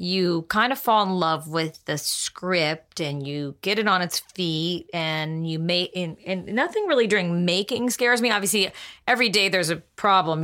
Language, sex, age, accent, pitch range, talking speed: English, female, 30-49, American, 155-190 Hz, 195 wpm